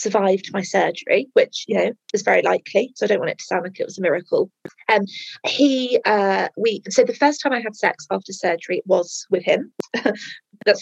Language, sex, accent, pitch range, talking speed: English, female, British, 200-290 Hz, 215 wpm